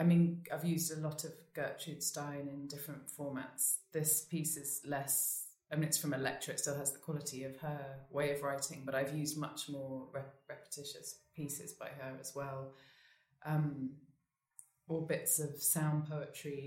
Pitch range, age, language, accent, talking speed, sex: 135-150 Hz, 20-39, English, British, 175 wpm, female